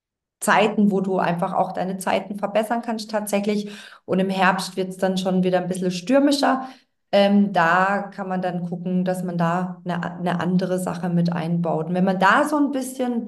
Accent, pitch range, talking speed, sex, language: German, 185-220 Hz, 195 wpm, female, German